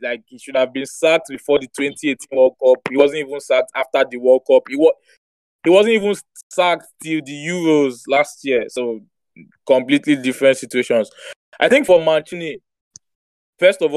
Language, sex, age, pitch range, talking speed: English, male, 20-39, 135-175 Hz, 175 wpm